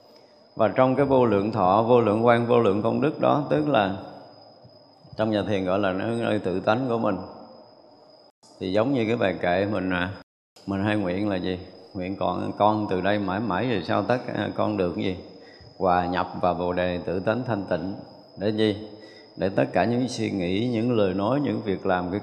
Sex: male